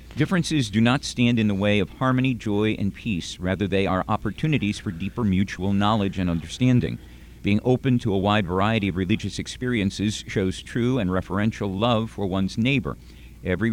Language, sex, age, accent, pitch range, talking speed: English, male, 50-69, American, 95-120 Hz, 175 wpm